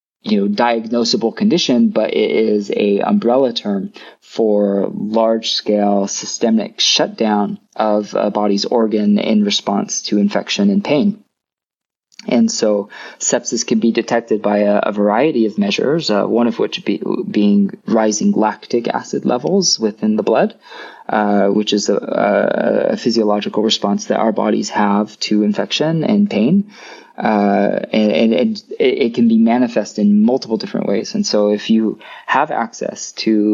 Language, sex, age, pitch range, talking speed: English, male, 20-39, 105-145 Hz, 150 wpm